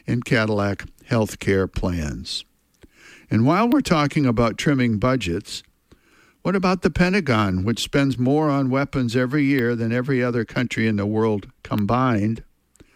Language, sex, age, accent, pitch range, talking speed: English, male, 60-79, American, 110-140 Hz, 145 wpm